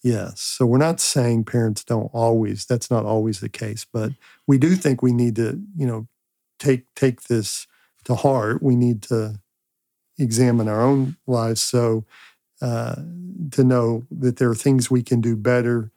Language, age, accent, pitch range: English, 50-69, American, 115-130 Hz